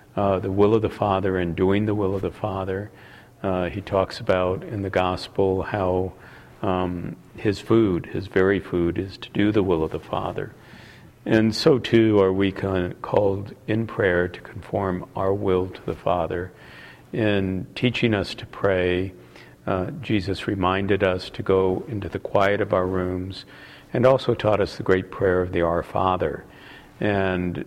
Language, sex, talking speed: English, male, 170 wpm